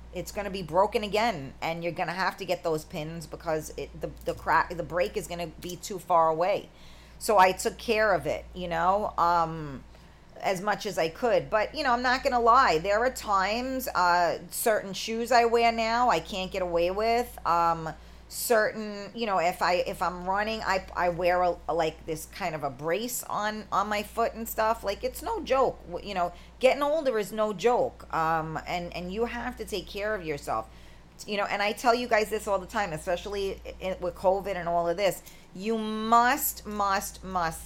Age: 40-59